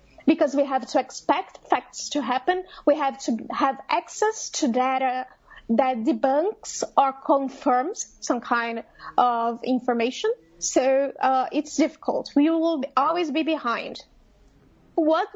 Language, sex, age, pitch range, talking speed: English, female, 20-39, 260-330 Hz, 130 wpm